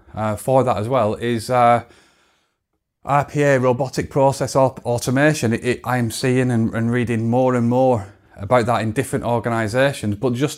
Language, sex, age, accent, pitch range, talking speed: English, male, 30-49, British, 115-135 Hz, 145 wpm